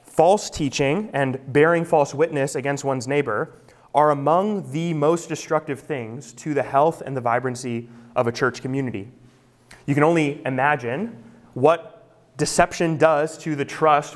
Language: English